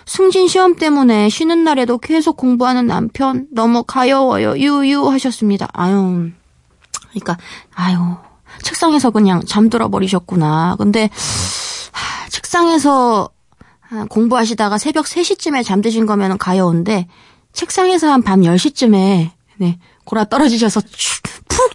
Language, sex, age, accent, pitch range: Korean, female, 20-39, native, 195-265 Hz